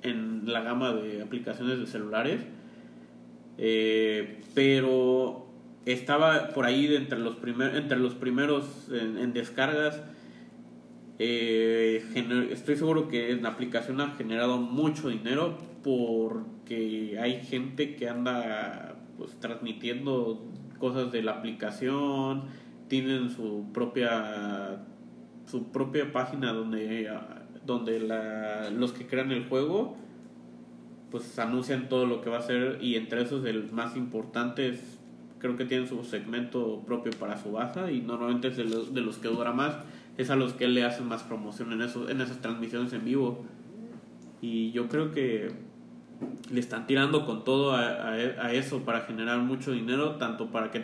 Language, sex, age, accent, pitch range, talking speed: Spanish, male, 30-49, Mexican, 110-130 Hz, 150 wpm